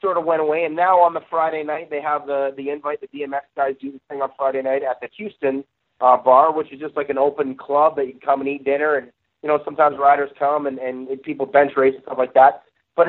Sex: male